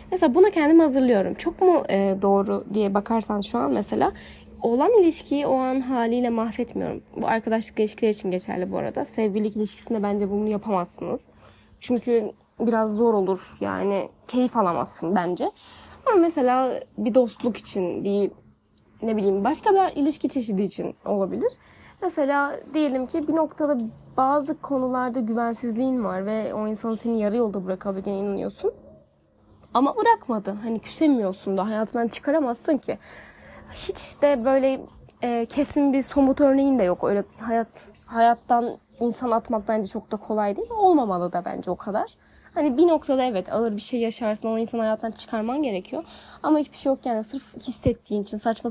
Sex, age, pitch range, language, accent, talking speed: female, 10-29, 215-275 Hz, Turkish, native, 155 wpm